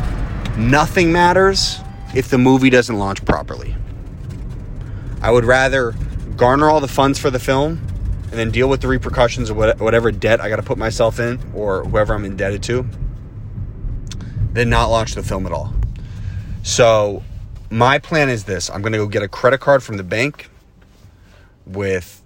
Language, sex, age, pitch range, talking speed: English, male, 30-49, 100-120 Hz, 165 wpm